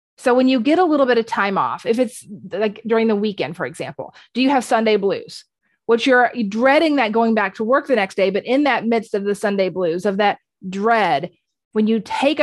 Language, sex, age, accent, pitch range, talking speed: English, female, 30-49, American, 205-250 Hz, 230 wpm